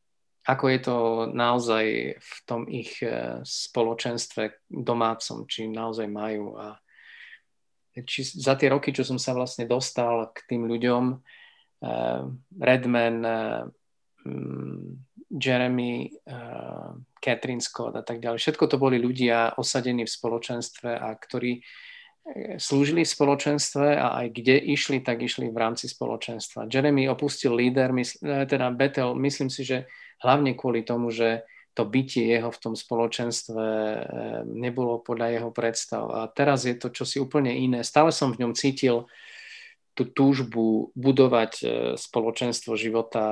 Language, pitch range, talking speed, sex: Slovak, 115-130 Hz, 125 wpm, male